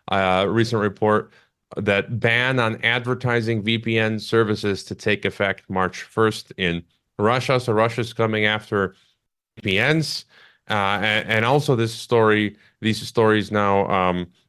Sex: male